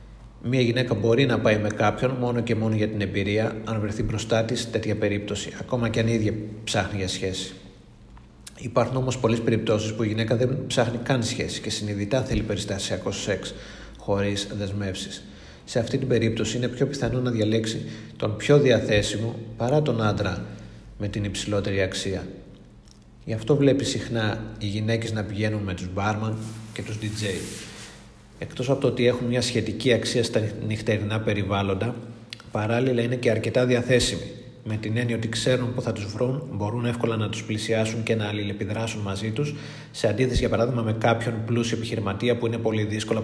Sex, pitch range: male, 105-120 Hz